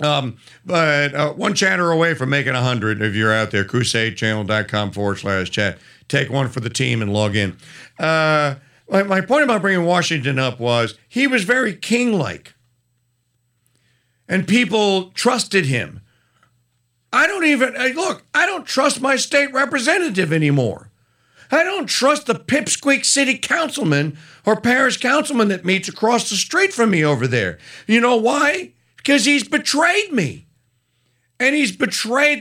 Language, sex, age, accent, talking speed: English, male, 50-69, American, 155 wpm